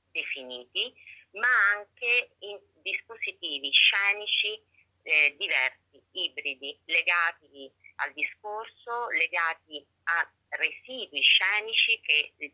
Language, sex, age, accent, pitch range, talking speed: Italian, female, 30-49, native, 145-190 Hz, 85 wpm